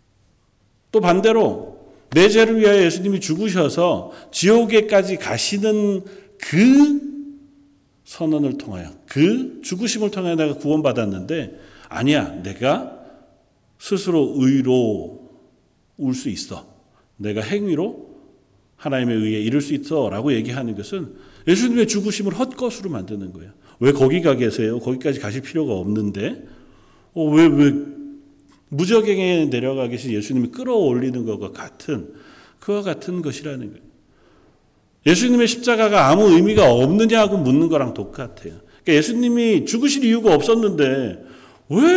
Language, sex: Korean, male